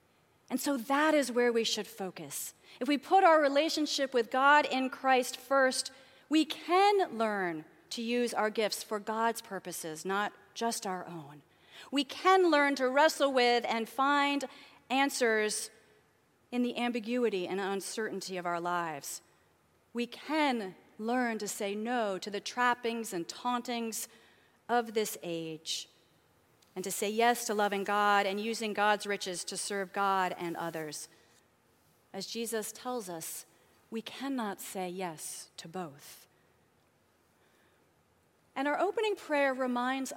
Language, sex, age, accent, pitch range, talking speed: English, female, 40-59, American, 200-275 Hz, 140 wpm